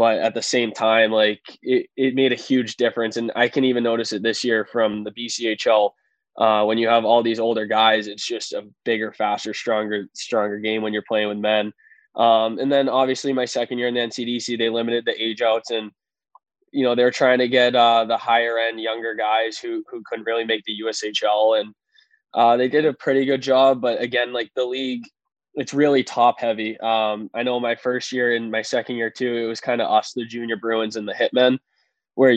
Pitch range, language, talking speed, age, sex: 110-125 Hz, English, 220 wpm, 20-39, male